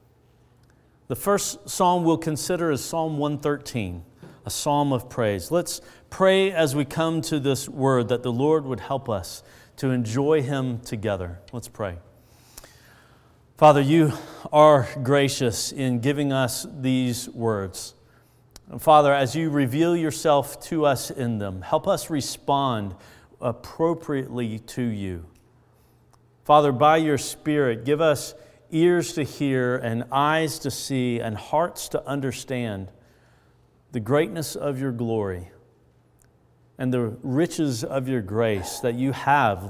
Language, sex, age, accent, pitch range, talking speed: English, male, 40-59, American, 115-150 Hz, 130 wpm